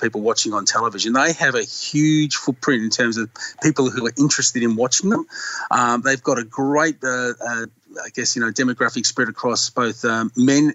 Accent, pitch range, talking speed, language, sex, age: Australian, 120-160 Hz, 200 wpm, English, male, 30-49